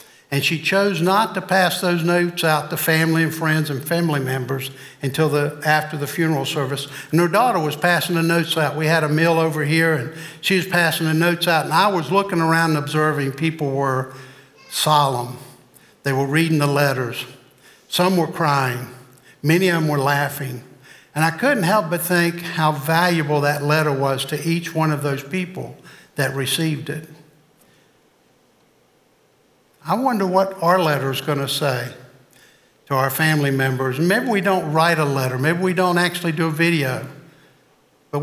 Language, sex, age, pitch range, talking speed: English, male, 60-79, 145-180 Hz, 175 wpm